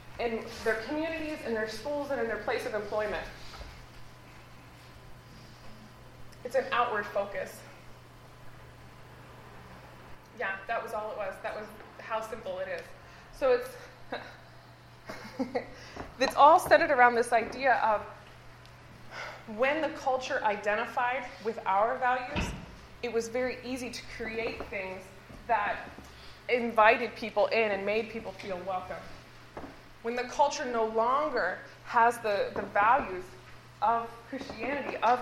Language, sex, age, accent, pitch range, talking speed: English, female, 20-39, American, 200-255 Hz, 125 wpm